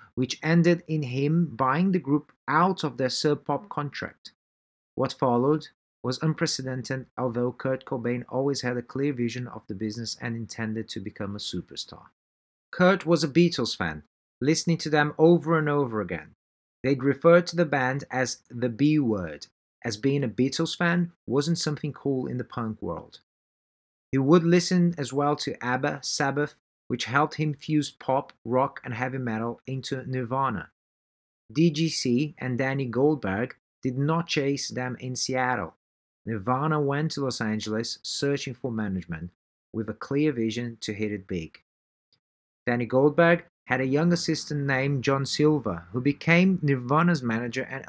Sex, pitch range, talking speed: male, 115-150 Hz, 155 wpm